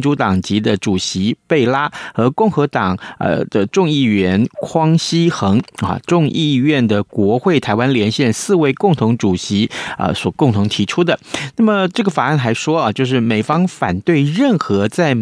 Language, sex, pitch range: Chinese, male, 110-155 Hz